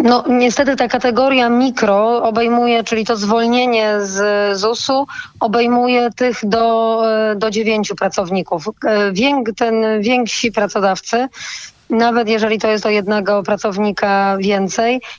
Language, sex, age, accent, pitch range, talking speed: Polish, female, 20-39, native, 210-240 Hz, 110 wpm